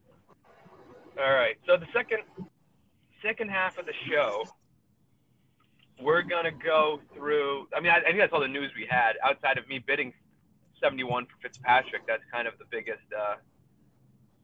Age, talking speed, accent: 30-49, 165 wpm, American